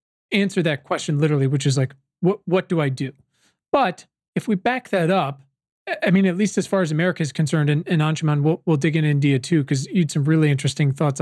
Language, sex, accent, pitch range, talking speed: English, male, American, 145-185 Hz, 235 wpm